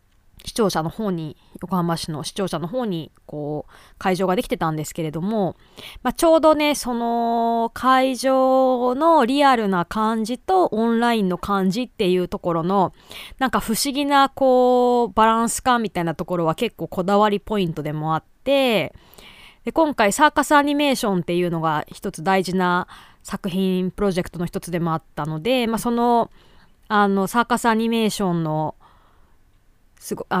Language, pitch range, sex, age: Japanese, 175-240 Hz, female, 20-39